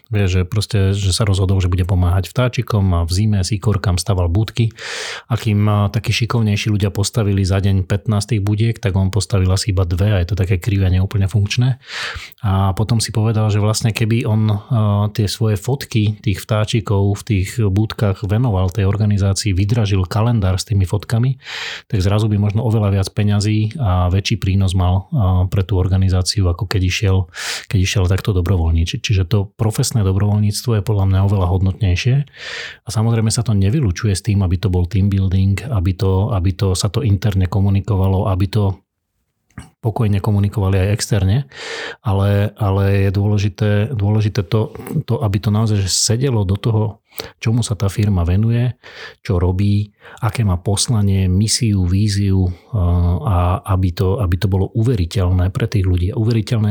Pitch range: 95-110 Hz